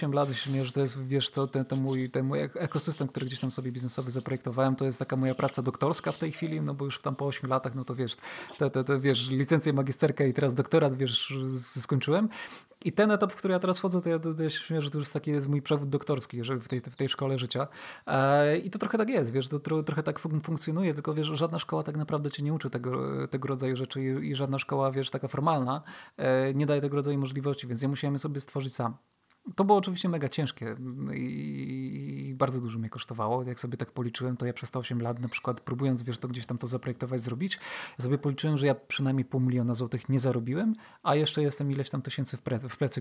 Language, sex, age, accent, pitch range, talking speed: Polish, male, 20-39, native, 130-155 Hz, 235 wpm